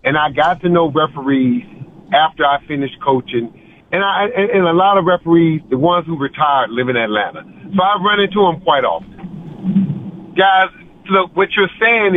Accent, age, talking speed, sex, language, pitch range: American, 50-69, 180 wpm, male, English, 165-195 Hz